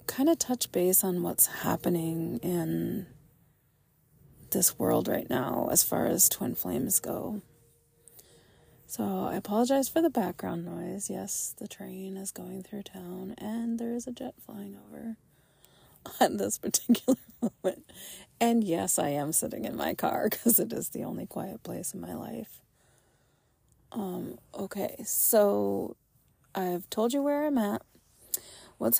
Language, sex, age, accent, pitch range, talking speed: English, female, 30-49, American, 165-210 Hz, 145 wpm